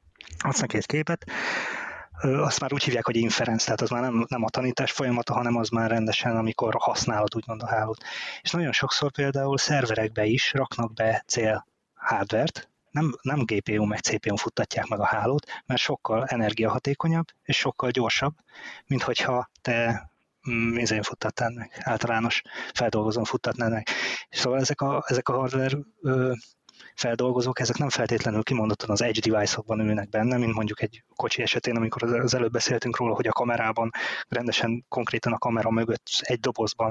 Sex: male